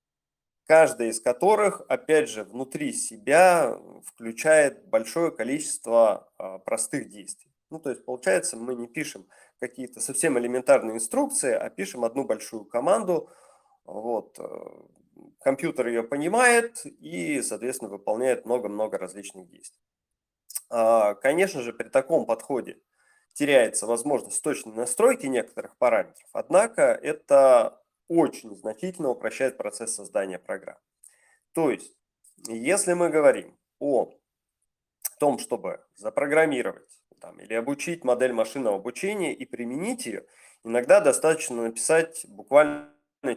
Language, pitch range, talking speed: Russian, 115-180 Hz, 110 wpm